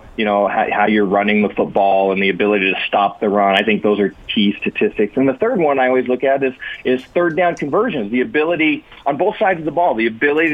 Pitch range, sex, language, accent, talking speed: 100-140 Hz, male, English, American, 250 wpm